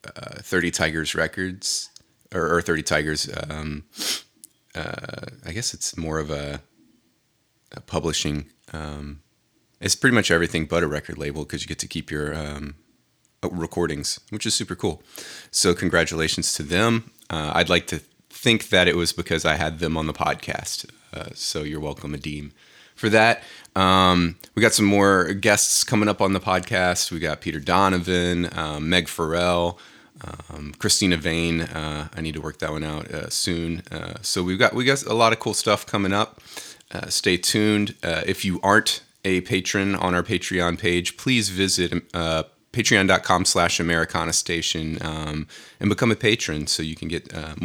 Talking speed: 175 wpm